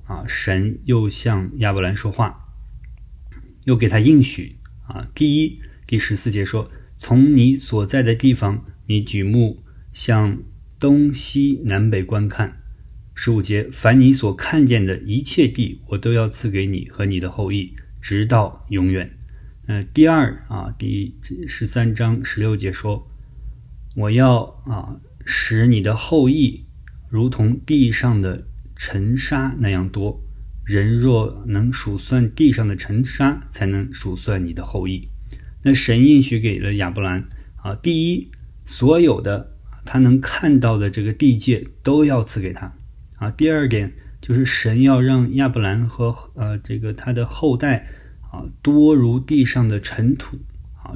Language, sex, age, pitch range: Chinese, male, 20-39, 95-130 Hz